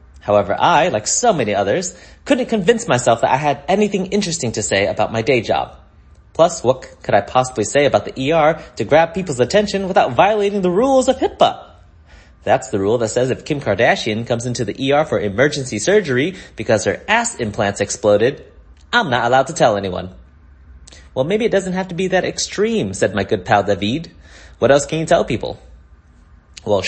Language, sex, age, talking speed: English, male, 30-49, 190 wpm